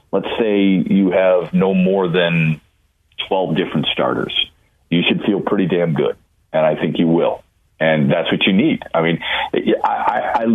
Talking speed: 170 wpm